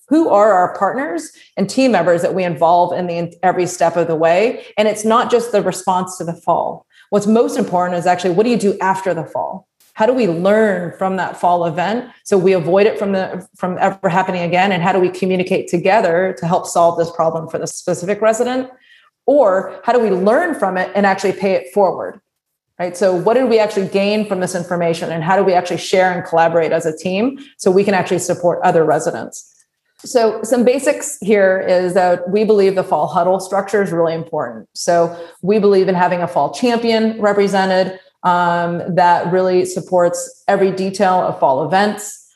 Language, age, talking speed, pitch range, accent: English, 30-49, 205 wpm, 175-205 Hz, American